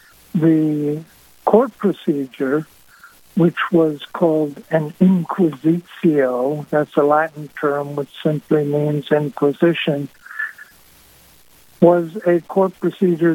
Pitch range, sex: 145-175 Hz, male